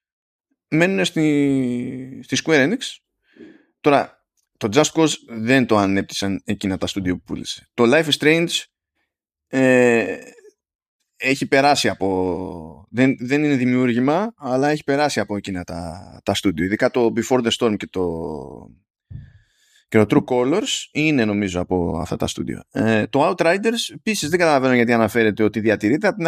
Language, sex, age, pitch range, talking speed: Greek, male, 20-39, 105-145 Hz, 145 wpm